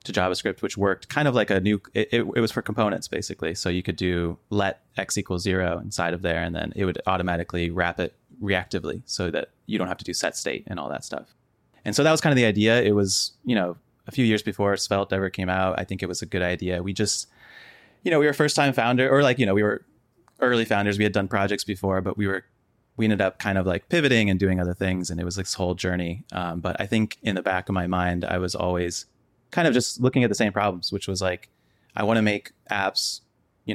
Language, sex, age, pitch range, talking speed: English, male, 20-39, 95-110 Hz, 260 wpm